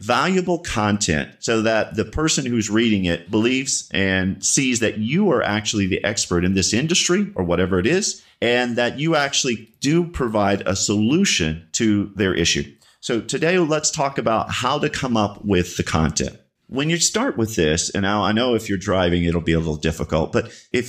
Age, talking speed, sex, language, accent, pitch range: 40-59, 190 wpm, male, English, American, 90-120 Hz